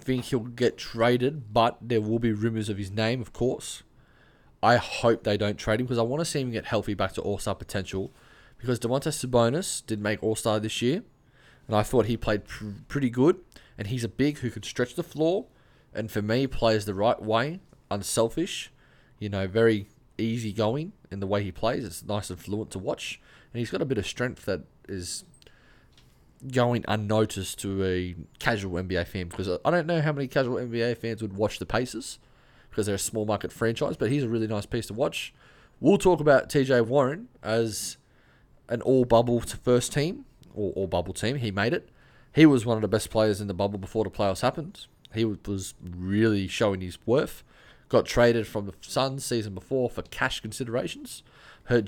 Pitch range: 105-125 Hz